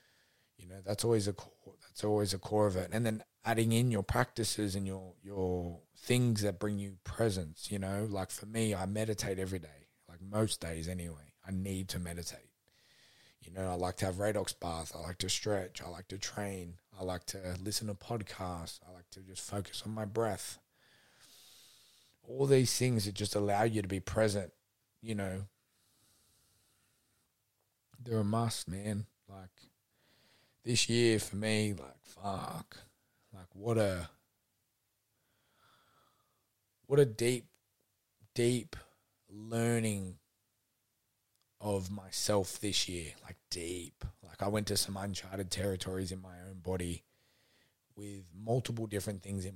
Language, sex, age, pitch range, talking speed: English, male, 20-39, 95-115 Hz, 155 wpm